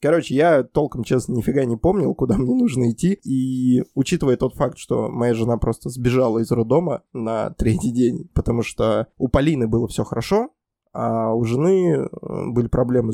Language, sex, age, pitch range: Russian, male, 20-39, 115-155 Hz